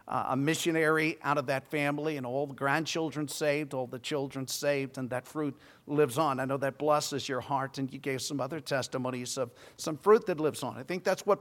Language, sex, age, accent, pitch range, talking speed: English, male, 50-69, American, 140-170 Hz, 225 wpm